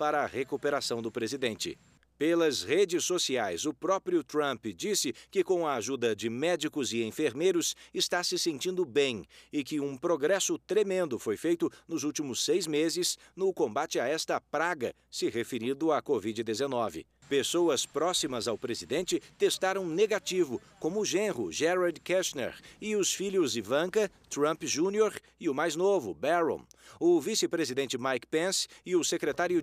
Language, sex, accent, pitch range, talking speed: Portuguese, male, Brazilian, 130-185 Hz, 150 wpm